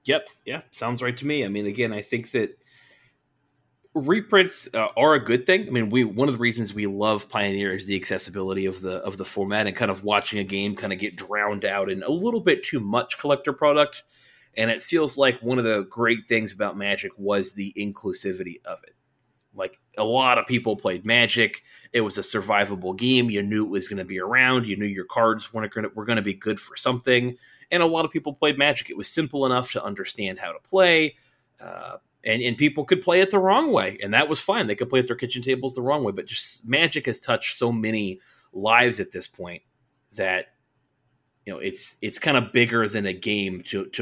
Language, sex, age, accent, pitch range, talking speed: English, male, 30-49, American, 100-135 Hz, 230 wpm